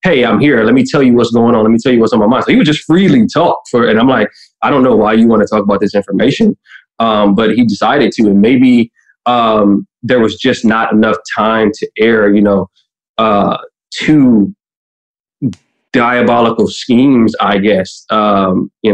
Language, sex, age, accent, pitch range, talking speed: English, male, 20-39, American, 100-120 Hz, 205 wpm